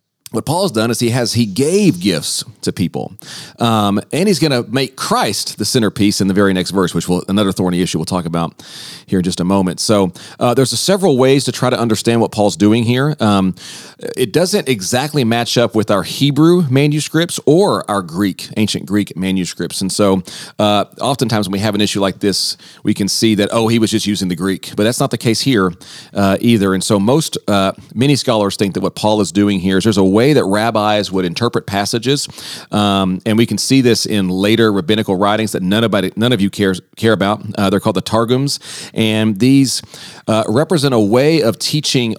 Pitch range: 100-125 Hz